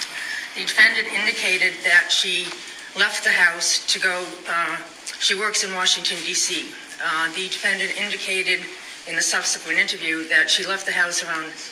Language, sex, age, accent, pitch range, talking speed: English, female, 50-69, American, 165-185 Hz, 150 wpm